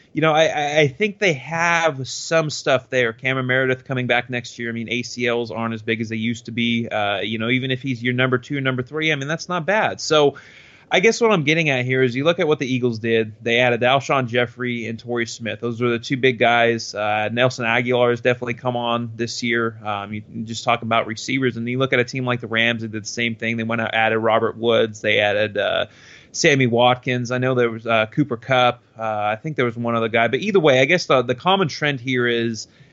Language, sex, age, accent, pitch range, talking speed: English, male, 30-49, American, 115-130 Hz, 250 wpm